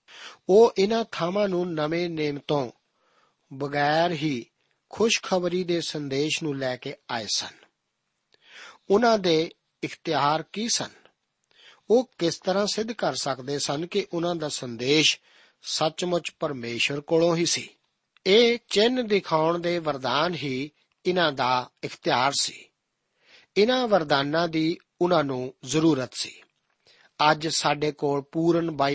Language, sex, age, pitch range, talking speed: Punjabi, male, 50-69, 145-180 Hz, 100 wpm